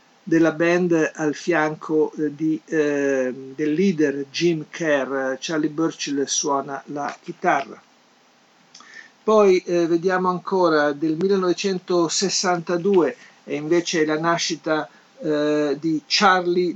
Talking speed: 100 wpm